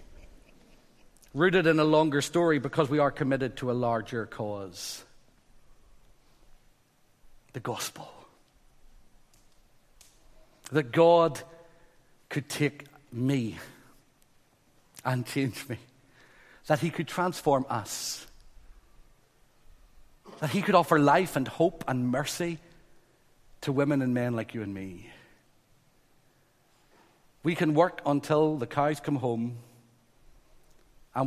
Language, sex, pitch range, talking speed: English, male, 125-160 Hz, 105 wpm